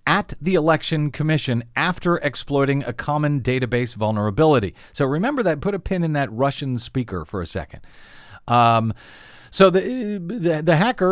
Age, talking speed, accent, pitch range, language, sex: 40-59, 155 wpm, American, 115-150 Hz, English, male